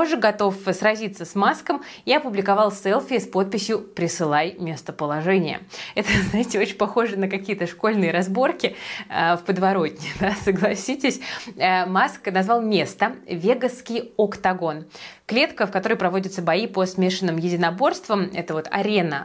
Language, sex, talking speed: Russian, female, 135 wpm